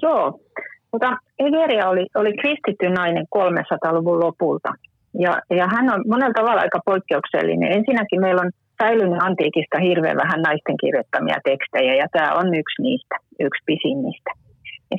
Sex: female